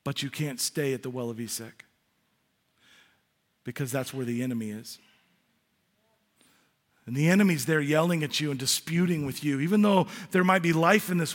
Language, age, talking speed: English, 40-59, 180 wpm